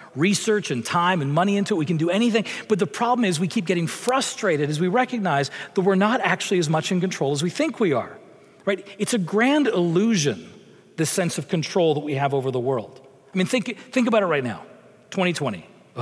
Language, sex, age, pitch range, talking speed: English, male, 40-59, 145-195 Hz, 225 wpm